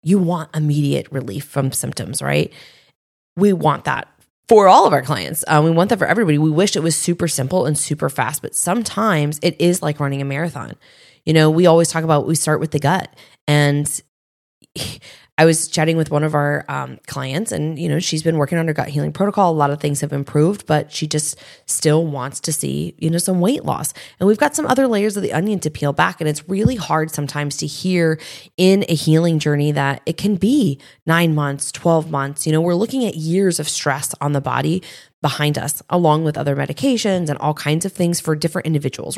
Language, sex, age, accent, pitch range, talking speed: English, female, 20-39, American, 145-170 Hz, 220 wpm